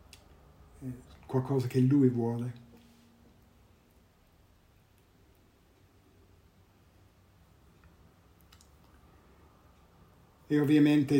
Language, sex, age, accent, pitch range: Italian, male, 60-79, native, 90-130 Hz